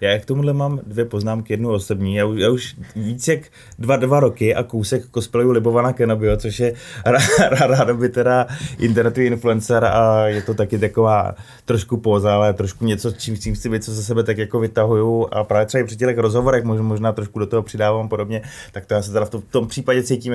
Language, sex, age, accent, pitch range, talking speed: Czech, male, 20-39, native, 100-120 Hz, 220 wpm